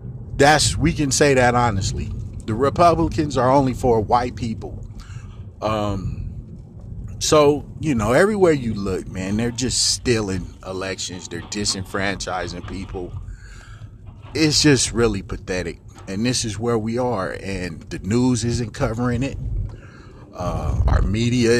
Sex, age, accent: male, 30-49, American